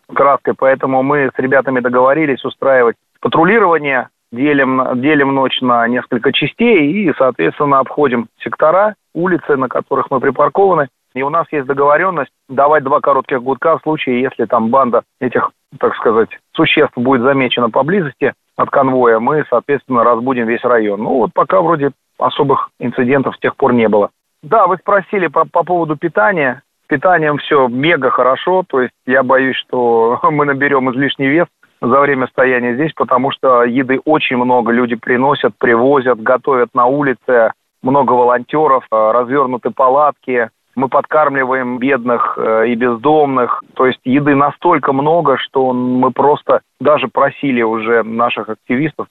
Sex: male